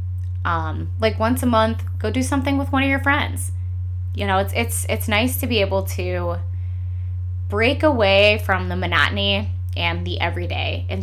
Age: 20-39